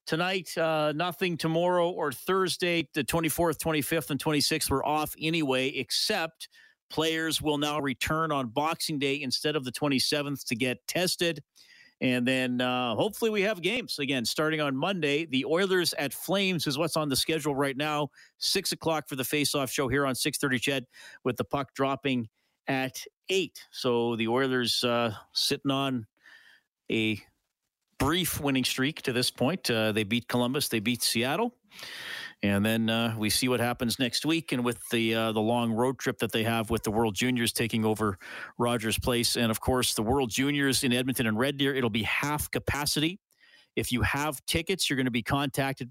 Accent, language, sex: American, English, male